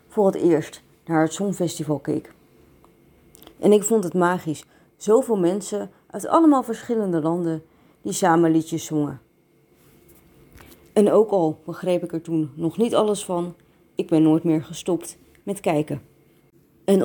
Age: 30-49